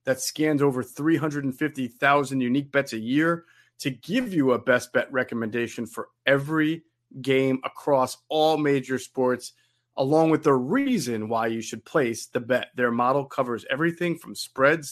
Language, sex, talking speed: English, male, 155 wpm